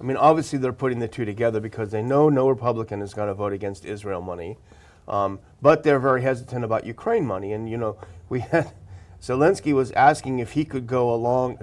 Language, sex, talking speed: English, male, 210 wpm